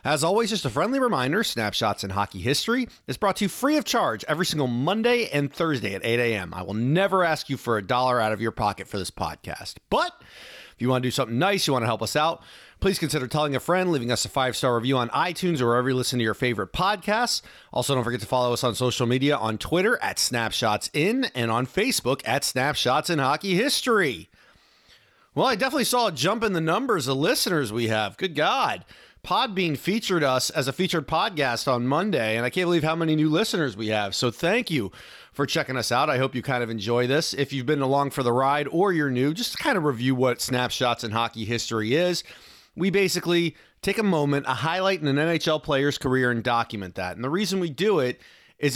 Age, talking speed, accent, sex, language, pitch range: 40-59, 230 wpm, American, male, English, 120-165 Hz